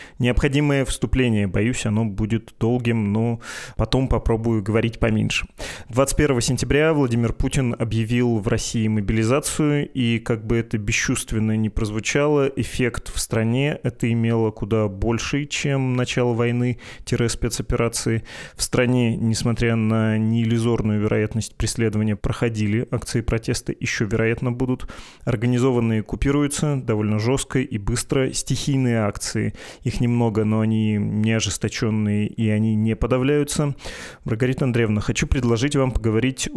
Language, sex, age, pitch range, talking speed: Russian, male, 20-39, 110-130 Hz, 120 wpm